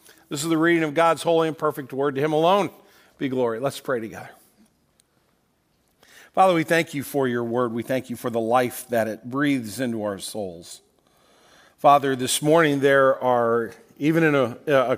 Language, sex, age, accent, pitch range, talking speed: English, male, 50-69, American, 125-150 Hz, 185 wpm